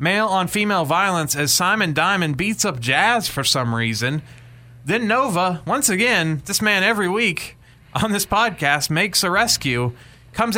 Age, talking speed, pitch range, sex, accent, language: 30-49, 160 wpm, 120-180 Hz, male, American, English